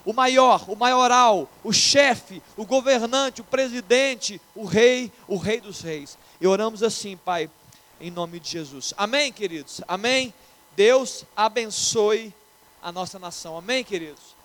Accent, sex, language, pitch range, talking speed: Brazilian, male, Portuguese, 205-255 Hz, 140 wpm